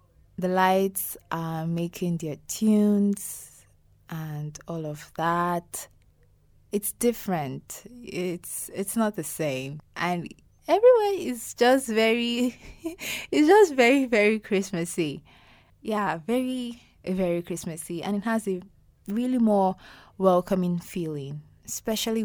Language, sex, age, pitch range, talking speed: English, female, 20-39, 155-220 Hz, 110 wpm